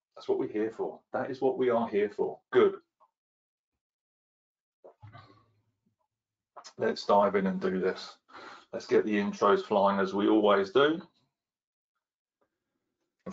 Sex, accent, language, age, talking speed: male, British, English, 30-49, 125 wpm